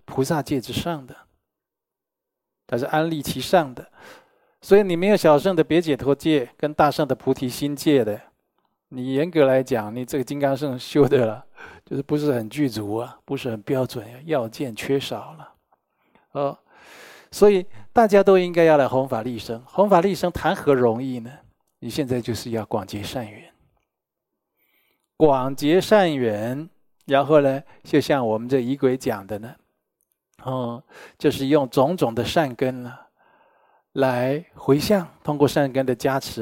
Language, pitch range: Chinese, 125-160 Hz